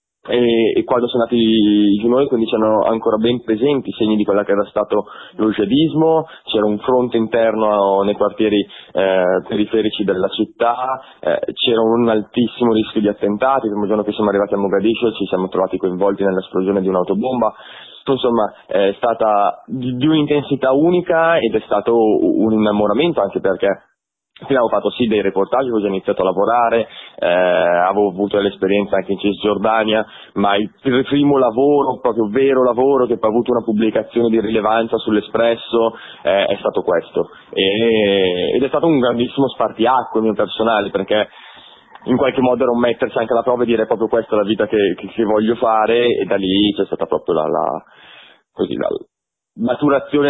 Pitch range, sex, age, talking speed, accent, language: 105-125 Hz, male, 20-39, 170 wpm, native, Italian